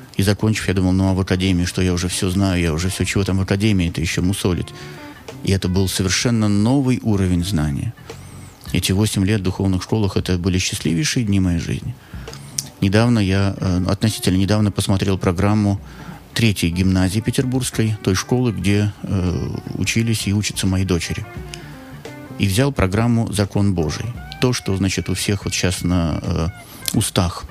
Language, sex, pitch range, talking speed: Russian, male, 95-115 Hz, 160 wpm